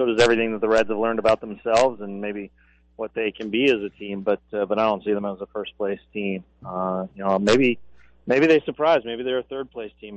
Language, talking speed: English, 255 wpm